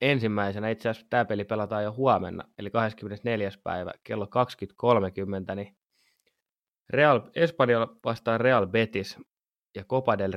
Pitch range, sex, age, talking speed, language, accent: 100-115 Hz, male, 20-39, 125 wpm, Finnish, native